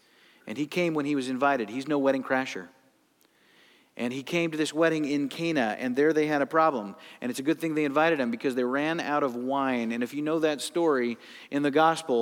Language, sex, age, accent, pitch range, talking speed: English, male, 40-59, American, 140-200 Hz, 235 wpm